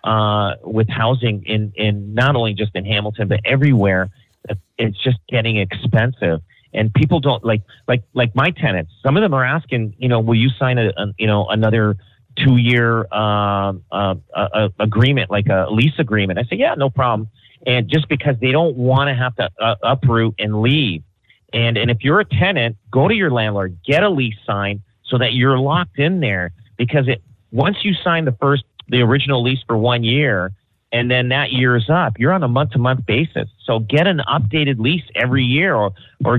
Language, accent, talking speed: English, American, 205 wpm